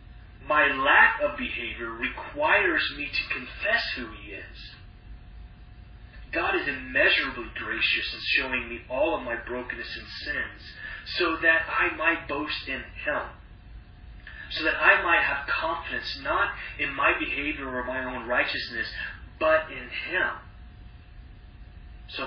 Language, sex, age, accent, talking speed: English, male, 30-49, American, 130 wpm